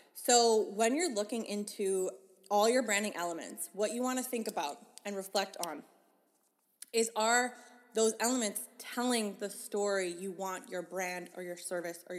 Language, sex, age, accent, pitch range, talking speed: English, female, 20-39, American, 195-225 Hz, 165 wpm